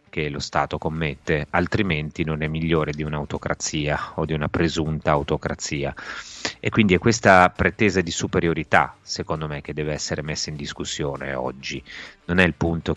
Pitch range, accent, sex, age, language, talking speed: 75-85 Hz, native, male, 30-49, Italian, 160 wpm